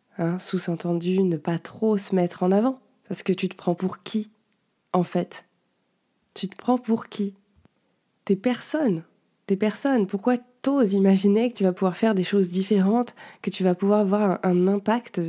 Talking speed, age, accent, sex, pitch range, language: 180 wpm, 20-39, French, female, 175-210 Hz, French